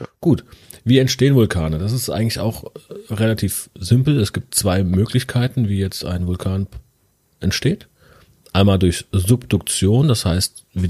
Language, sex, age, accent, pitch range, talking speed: German, male, 40-59, German, 90-115 Hz, 140 wpm